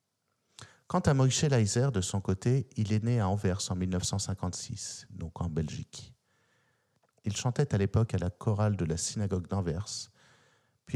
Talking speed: 160 wpm